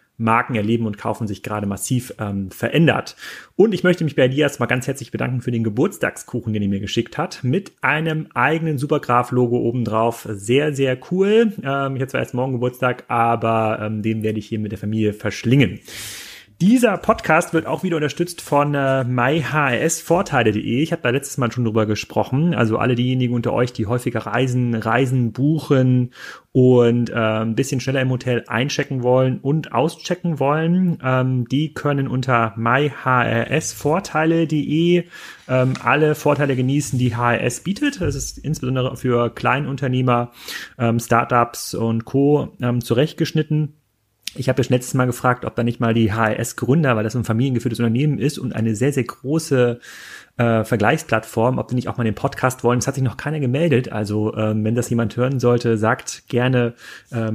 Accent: German